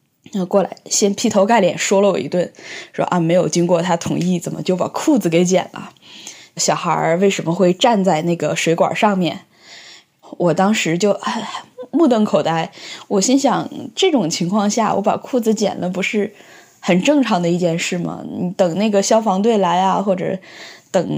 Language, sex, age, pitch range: Chinese, female, 10-29, 180-225 Hz